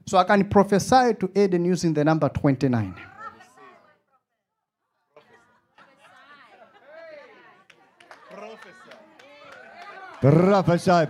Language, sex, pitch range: English, male, 150-205 Hz